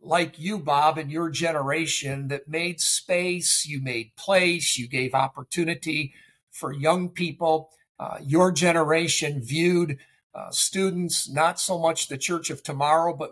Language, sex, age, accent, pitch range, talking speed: English, male, 50-69, American, 150-185 Hz, 145 wpm